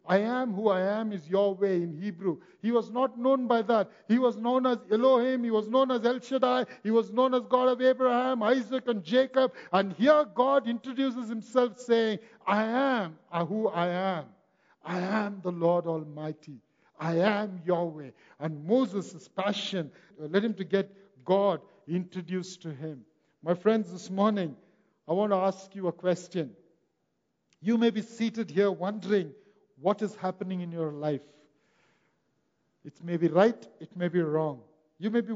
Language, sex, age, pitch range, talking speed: English, male, 60-79, 160-215 Hz, 170 wpm